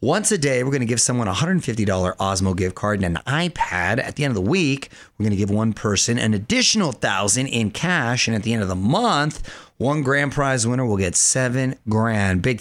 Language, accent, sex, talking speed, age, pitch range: English, American, male, 235 wpm, 30-49, 105-135 Hz